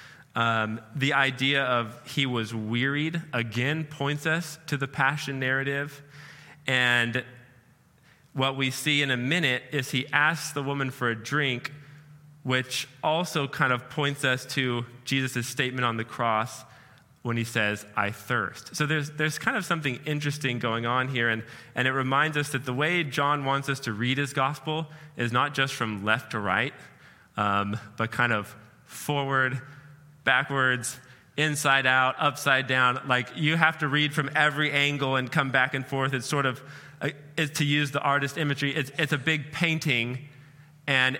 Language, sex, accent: English, male, American